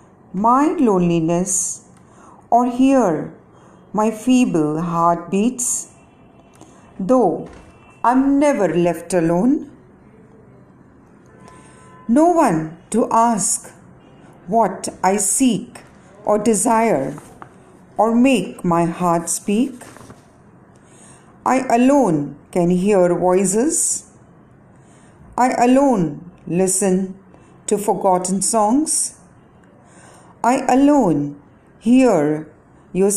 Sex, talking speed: female, 75 wpm